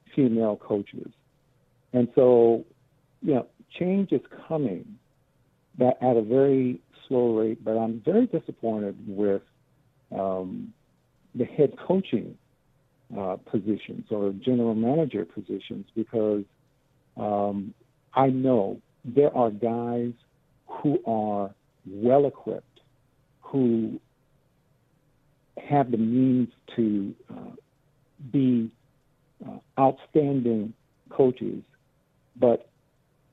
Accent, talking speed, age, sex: American, 90 wpm, 60-79, male